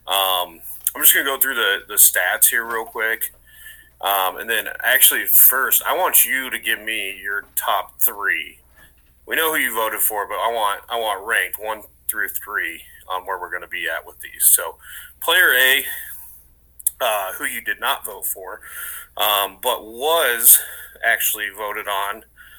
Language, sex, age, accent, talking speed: English, male, 30-49, American, 175 wpm